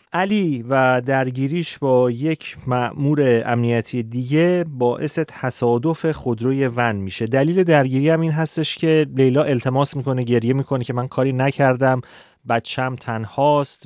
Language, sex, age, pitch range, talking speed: Persian, male, 30-49, 115-145 Hz, 130 wpm